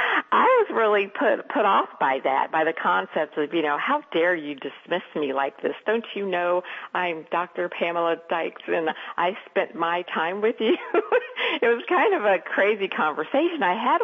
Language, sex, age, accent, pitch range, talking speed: English, female, 50-69, American, 160-235 Hz, 190 wpm